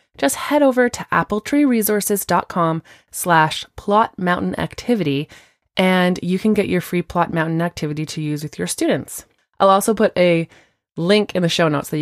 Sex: female